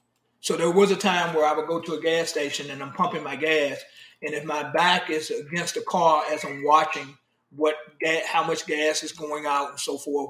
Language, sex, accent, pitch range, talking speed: English, male, American, 150-180 Hz, 225 wpm